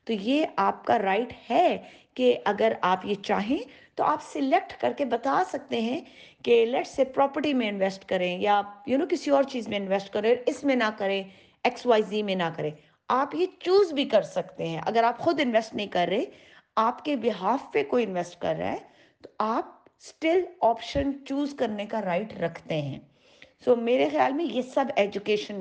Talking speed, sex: 190 wpm, female